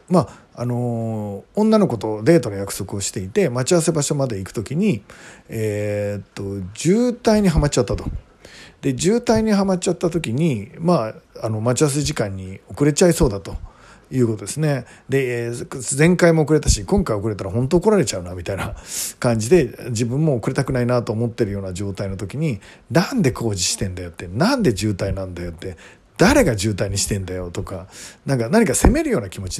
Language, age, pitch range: Japanese, 40-59, 100-155 Hz